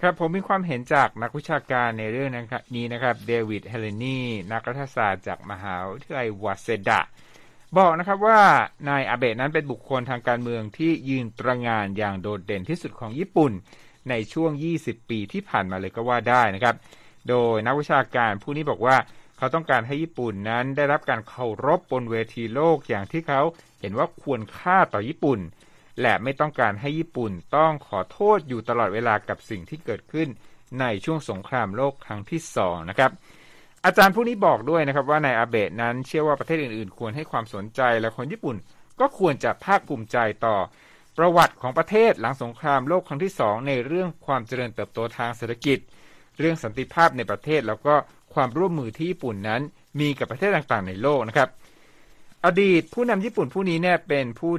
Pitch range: 115-160 Hz